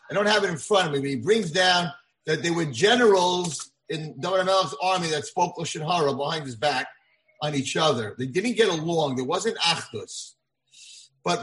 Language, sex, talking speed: English, male, 195 wpm